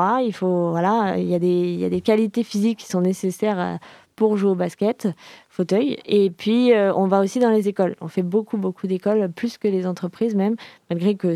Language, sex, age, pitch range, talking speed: French, female, 20-39, 180-210 Hz, 215 wpm